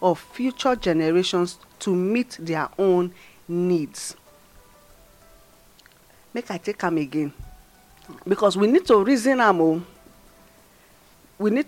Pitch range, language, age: 160-235 Hz, English, 40-59